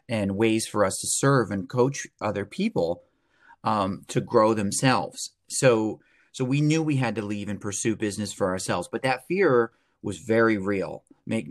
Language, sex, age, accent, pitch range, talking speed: English, male, 30-49, American, 105-130 Hz, 175 wpm